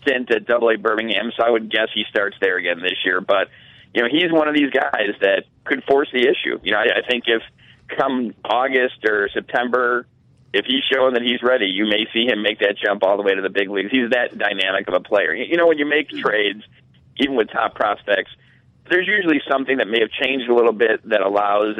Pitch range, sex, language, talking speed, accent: 105-135 Hz, male, English, 230 wpm, American